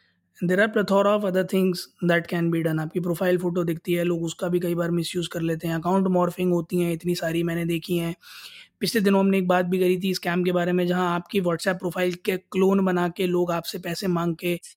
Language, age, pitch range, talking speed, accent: Hindi, 20-39, 170-205 Hz, 245 wpm, native